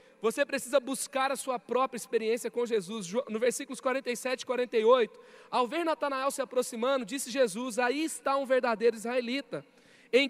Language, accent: Portuguese, Brazilian